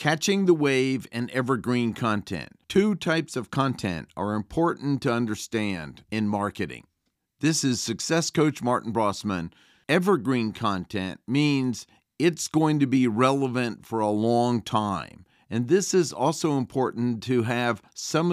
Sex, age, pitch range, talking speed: male, 50-69, 110-140 Hz, 140 wpm